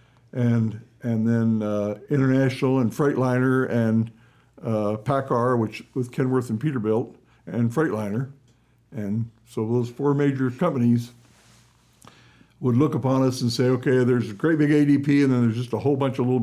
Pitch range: 115-135 Hz